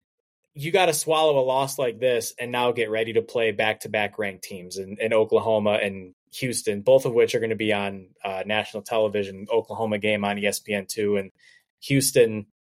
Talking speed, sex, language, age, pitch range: 190 wpm, male, English, 20-39, 105-145 Hz